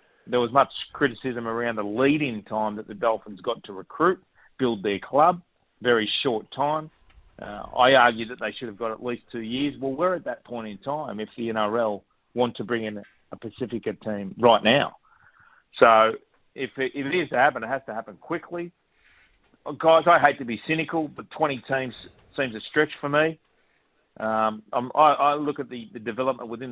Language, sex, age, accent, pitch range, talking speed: English, male, 40-59, Australian, 115-145 Hz, 195 wpm